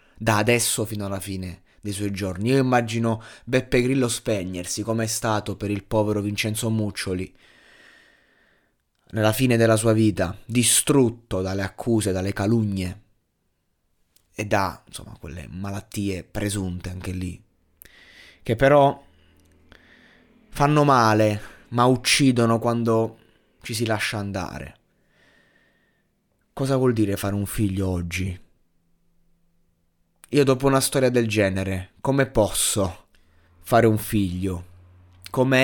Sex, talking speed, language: male, 115 wpm, Italian